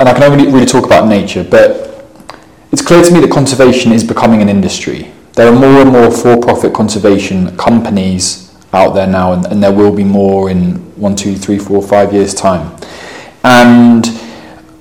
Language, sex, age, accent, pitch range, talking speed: English, male, 20-39, British, 100-115 Hz, 180 wpm